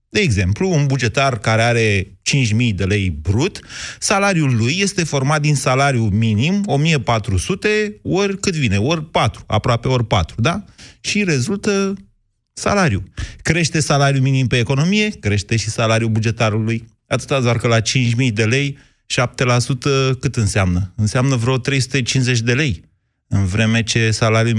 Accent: native